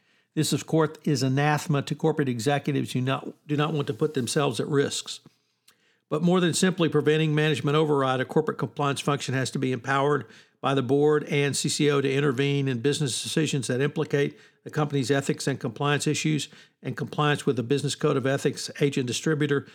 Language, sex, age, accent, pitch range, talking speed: English, male, 60-79, American, 130-150 Hz, 190 wpm